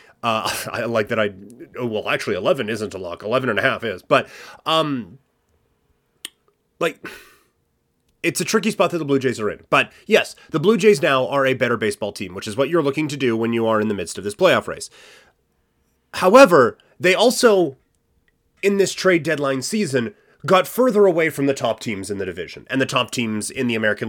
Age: 30-49